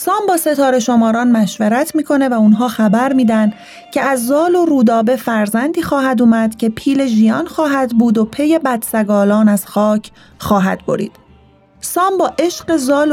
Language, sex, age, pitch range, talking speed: Arabic, female, 30-49, 215-275 Hz, 155 wpm